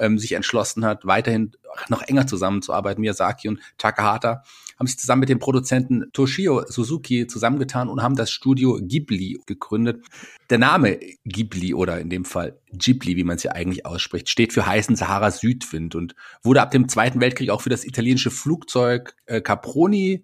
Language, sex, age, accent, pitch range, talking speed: German, male, 40-59, German, 110-130 Hz, 165 wpm